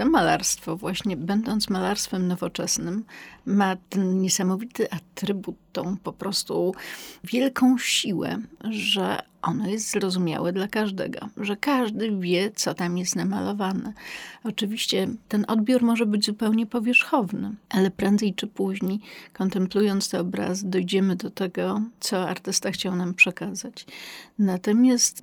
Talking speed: 120 wpm